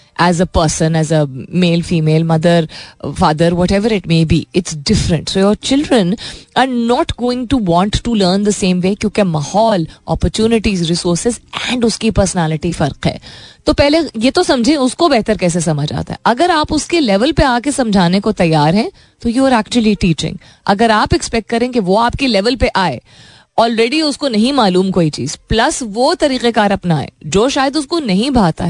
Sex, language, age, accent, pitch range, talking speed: female, Hindi, 20-39, native, 165-220 Hz, 190 wpm